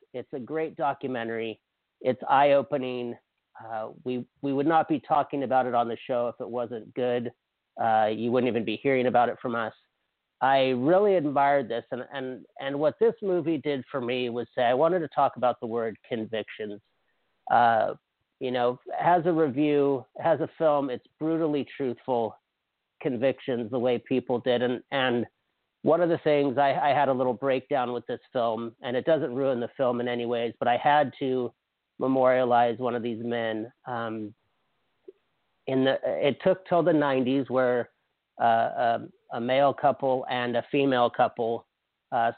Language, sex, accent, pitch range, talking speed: English, male, American, 120-140 Hz, 175 wpm